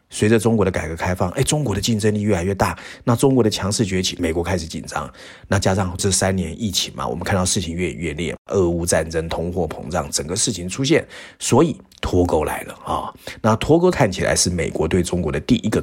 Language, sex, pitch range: Chinese, male, 90-120 Hz